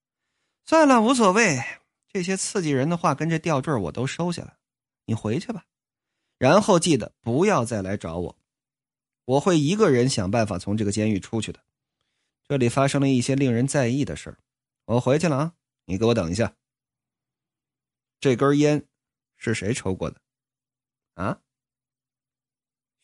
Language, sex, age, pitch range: Chinese, male, 20-39, 115-140 Hz